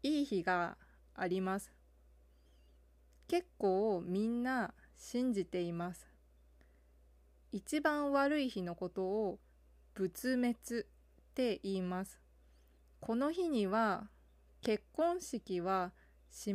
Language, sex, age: Japanese, female, 20-39